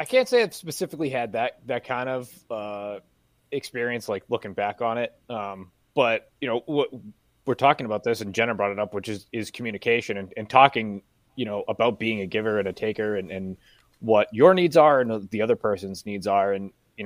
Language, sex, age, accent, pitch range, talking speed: English, male, 20-39, American, 105-125 Hz, 210 wpm